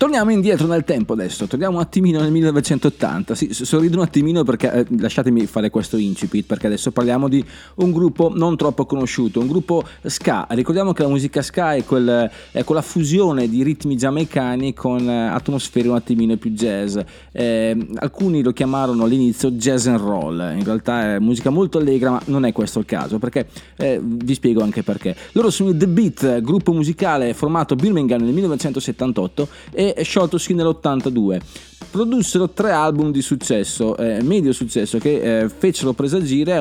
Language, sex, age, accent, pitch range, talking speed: Italian, male, 30-49, native, 120-165 Hz, 170 wpm